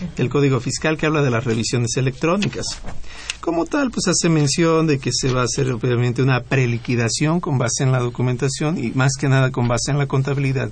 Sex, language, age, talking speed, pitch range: male, Spanish, 50-69, 205 wpm, 120-160 Hz